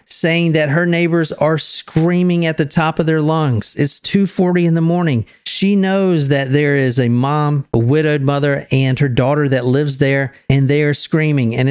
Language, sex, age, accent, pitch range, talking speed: English, male, 40-59, American, 125-160 Hz, 195 wpm